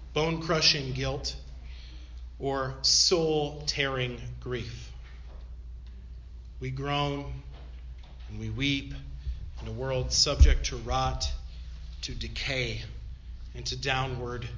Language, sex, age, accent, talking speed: English, male, 40-59, American, 85 wpm